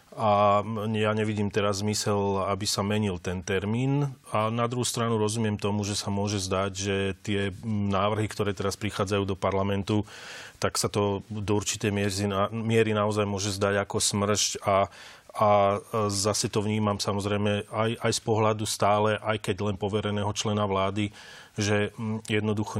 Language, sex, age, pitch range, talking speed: Slovak, male, 30-49, 100-110 Hz, 155 wpm